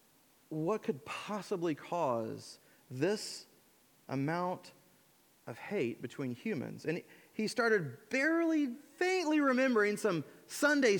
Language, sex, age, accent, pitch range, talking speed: English, male, 30-49, American, 175-255 Hz, 100 wpm